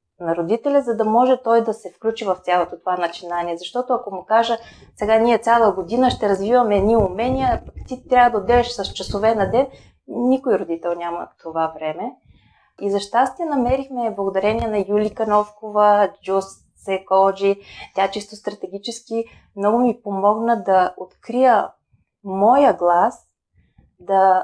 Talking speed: 145 wpm